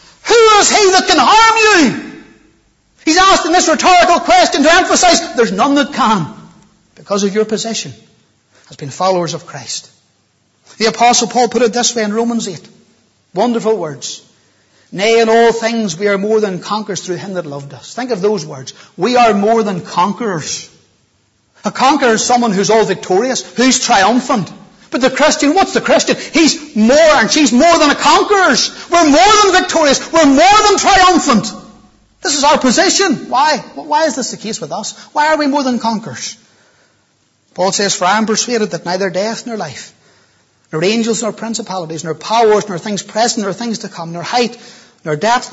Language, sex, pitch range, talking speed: English, male, 180-260 Hz, 185 wpm